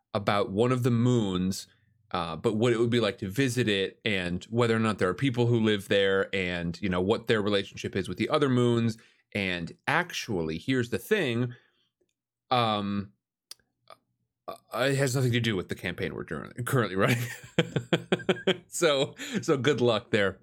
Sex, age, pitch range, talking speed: male, 30-49, 100-140 Hz, 175 wpm